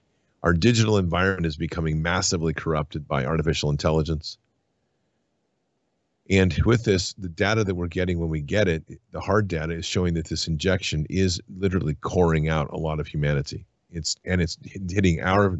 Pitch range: 80-95 Hz